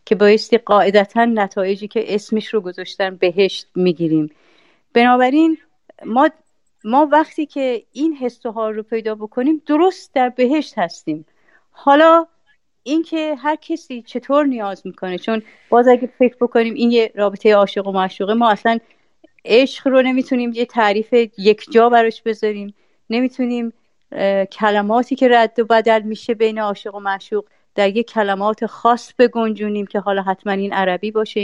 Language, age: Persian, 40-59